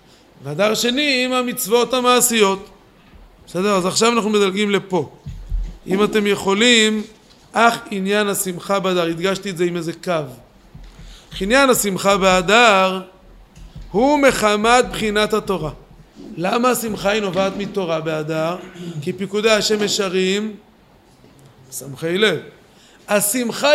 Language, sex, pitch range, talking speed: Hebrew, male, 190-245 Hz, 110 wpm